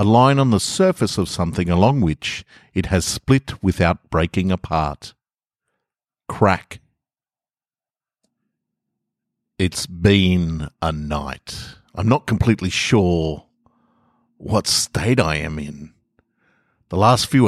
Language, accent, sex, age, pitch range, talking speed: English, Australian, male, 50-69, 80-100 Hz, 110 wpm